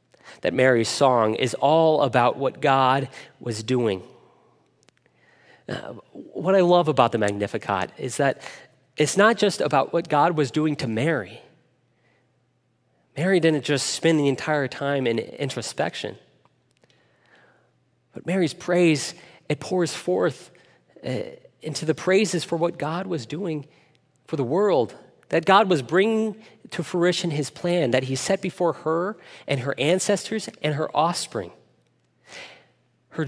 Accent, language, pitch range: American, English, 130-180 Hz